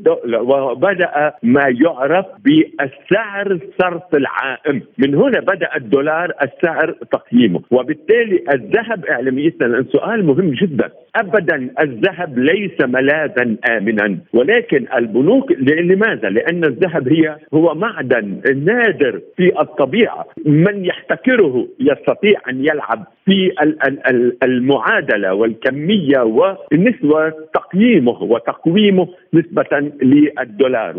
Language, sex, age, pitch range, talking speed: Arabic, male, 50-69, 140-210 Hz, 95 wpm